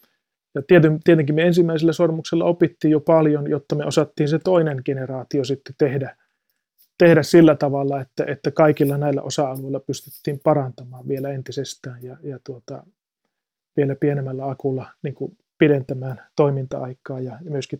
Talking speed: 130 wpm